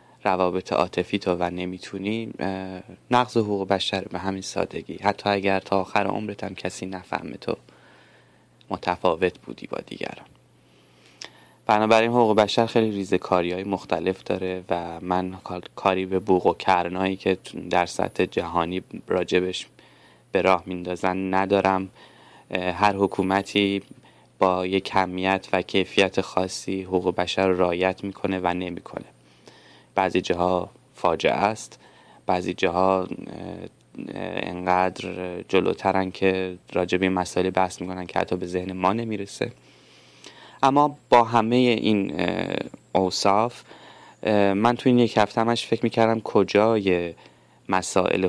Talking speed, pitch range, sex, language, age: 120 wpm, 90-105 Hz, male, English, 20-39